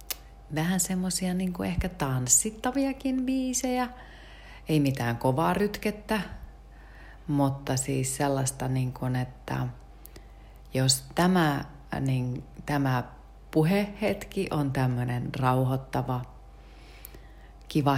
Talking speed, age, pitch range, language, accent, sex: 85 wpm, 30-49, 115-145 Hz, Finnish, native, female